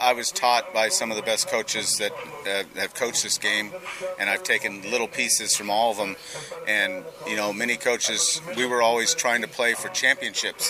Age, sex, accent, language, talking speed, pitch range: 40-59, male, American, English, 210 wpm, 110-130 Hz